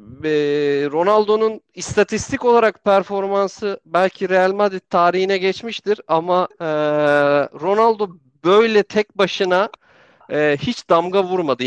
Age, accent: 40-59, native